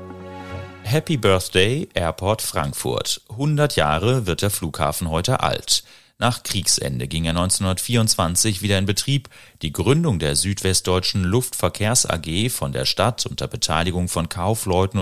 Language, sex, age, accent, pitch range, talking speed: German, male, 30-49, German, 85-115 Hz, 125 wpm